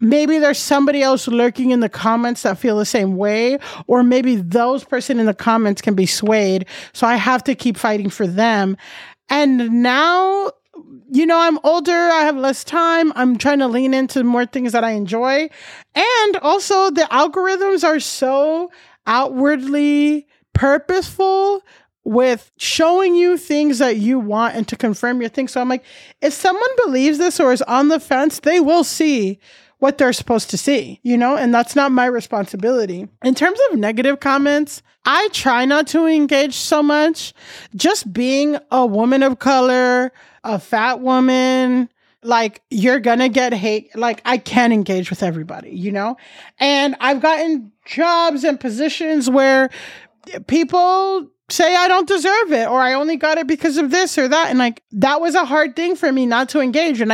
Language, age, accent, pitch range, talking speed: English, 30-49, American, 240-310 Hz, 175 wpm